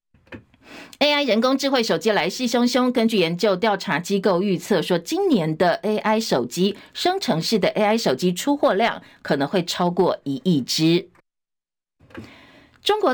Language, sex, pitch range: Chinese, female, 180-230 Hz